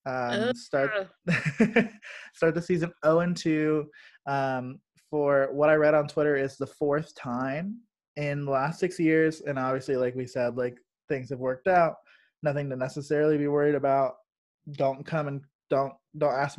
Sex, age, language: male, 20-39, English